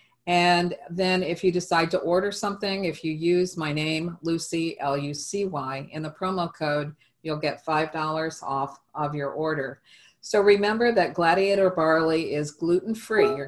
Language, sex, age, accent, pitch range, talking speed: English, female, 50-69, American, 150-185 Hz, 150 wpm